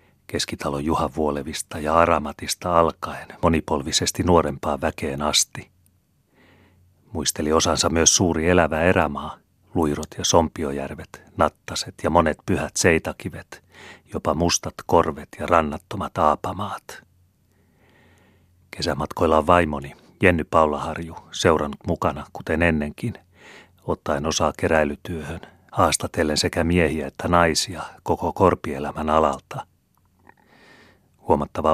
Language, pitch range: Finnish, 75-90 Hz